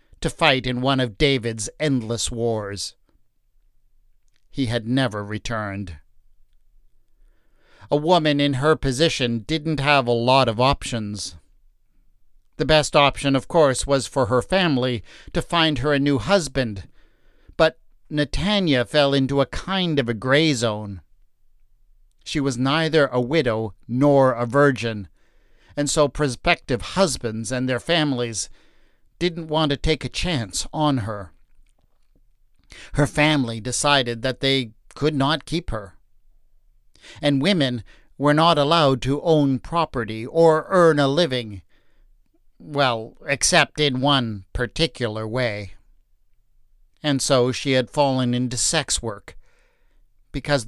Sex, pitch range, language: male, 115-150 Hz, English